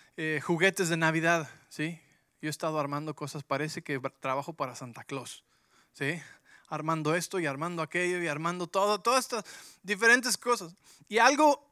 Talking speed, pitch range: 160 wpm, 150-195 Hz